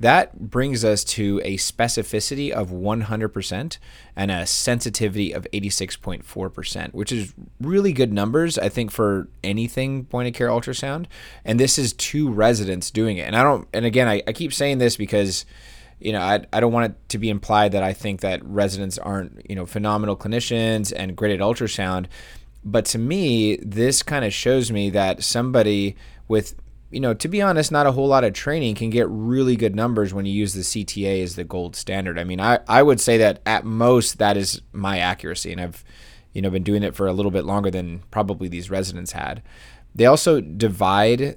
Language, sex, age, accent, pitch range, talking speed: English, male, 20-39, American, 95-115 Hz, 200 wpm